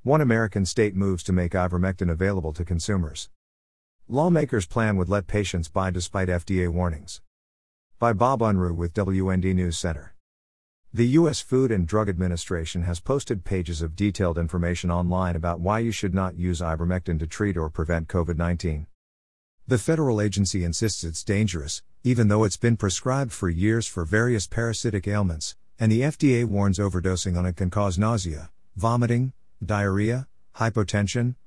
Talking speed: 155 wpm